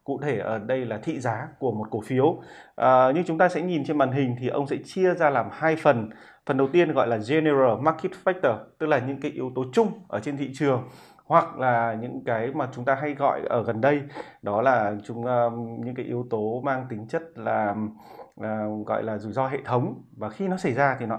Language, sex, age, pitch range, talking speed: Vietnamese, male, 20-39, 115-145 Hz, 230 wpm